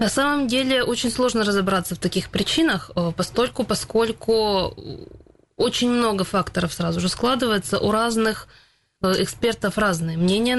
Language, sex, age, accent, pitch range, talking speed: Russian, female, 20-39, native, 180-225 Hz, 125 wpm